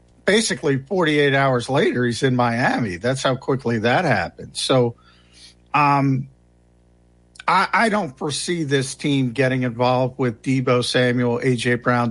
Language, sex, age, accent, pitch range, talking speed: English, male, 50-69, American, 110-135 Hz, 135 wpm